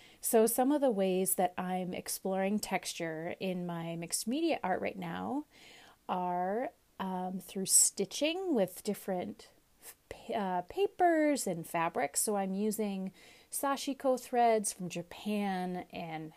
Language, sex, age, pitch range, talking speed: English, female, 30-49, 180-230 Hz, 125 wpm